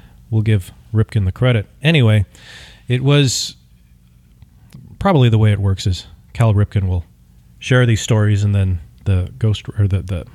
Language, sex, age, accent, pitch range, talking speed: English, male, 40-59, American, 95-125 Hz, 155 wpm